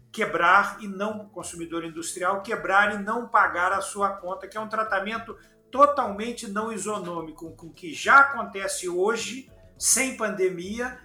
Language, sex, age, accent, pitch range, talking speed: Portuguese, male, 50-69, Brazilian, 190-240 Hz, 145 wpm